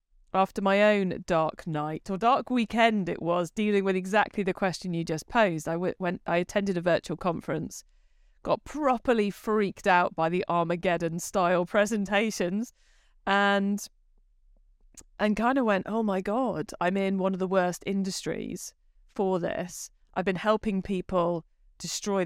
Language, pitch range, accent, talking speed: English, 175-205 Hz, British, 150 wpm